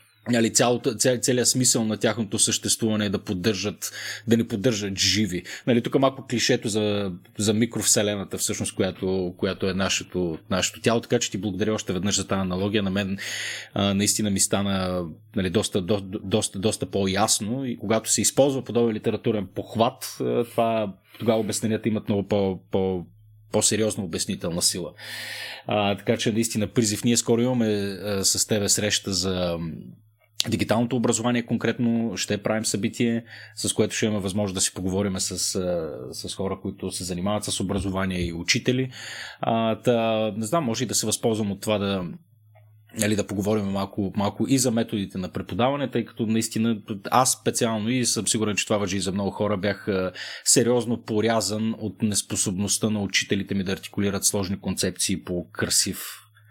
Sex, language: male, Bulgarian